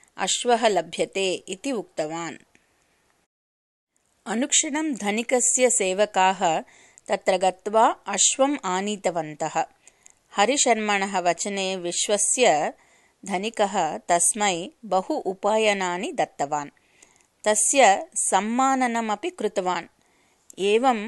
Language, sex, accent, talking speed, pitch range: English, female, Indian, 65 wpm, 185-235 Hz